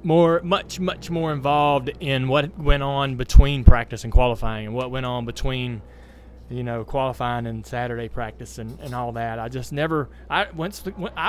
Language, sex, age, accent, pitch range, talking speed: English, male, 20-39, American, 115-145 Hz, 175 wpm